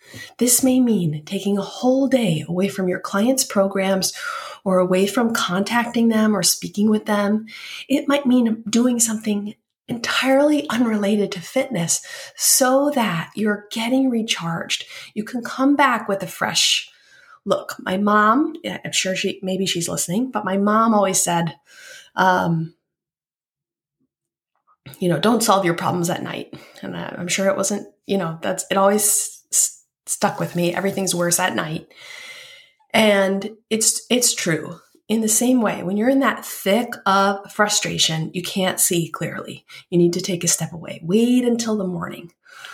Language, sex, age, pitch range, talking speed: English, female, 30-49, 185-240 Hz, 160 wpm